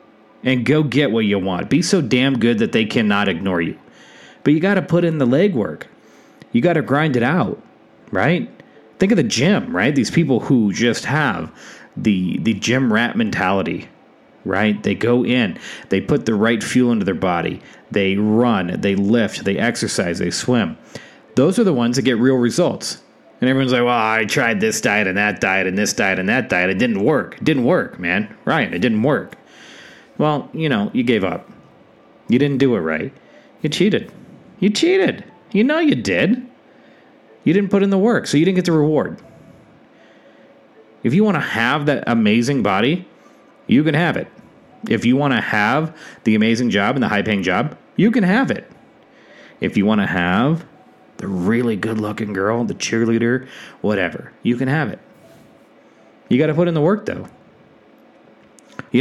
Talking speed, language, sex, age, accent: 190 wpm, English, male, 30-49, American